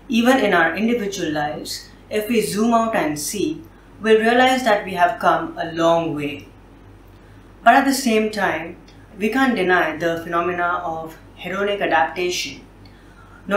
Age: 30-49